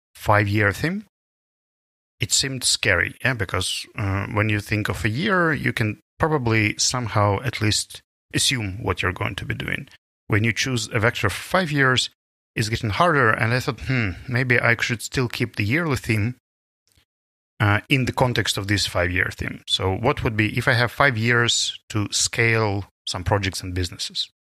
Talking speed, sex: 185 wpm, male